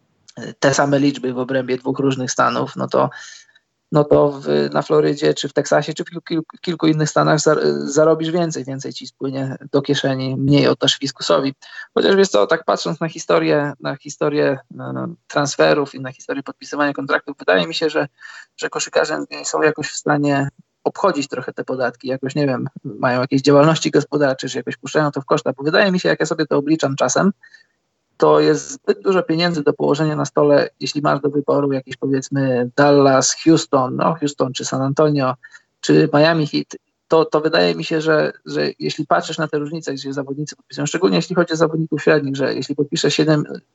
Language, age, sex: Polish, 20-39, male